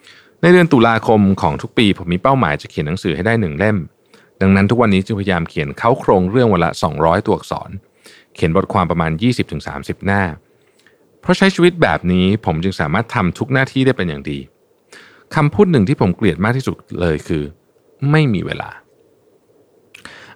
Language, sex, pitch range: Thai, male, 90-150 Hz